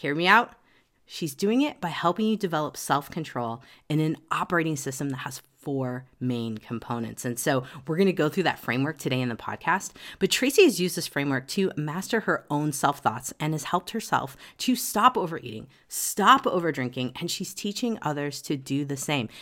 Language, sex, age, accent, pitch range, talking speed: English, female, 40-59, American, 140-205 Hz, 190 wpm